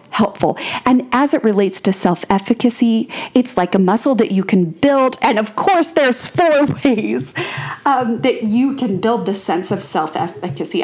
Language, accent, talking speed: English, American, 165 wpm